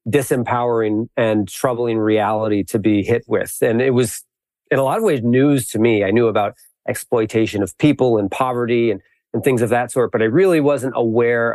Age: 40-59